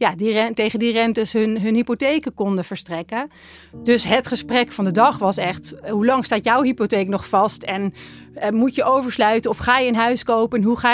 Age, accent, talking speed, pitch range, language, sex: 30-49, Dutch, 205 wpm, 195-245 Hz, Dutch, female